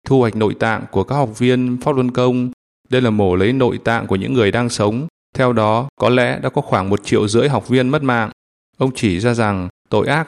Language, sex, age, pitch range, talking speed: Vietnamese, male, 20-39, 105-125 Hz, 245 wpm